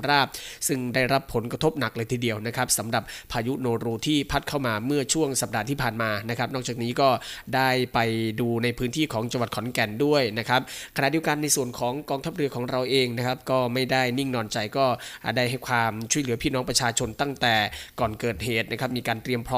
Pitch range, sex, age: 115-135 Hz, male, 20-39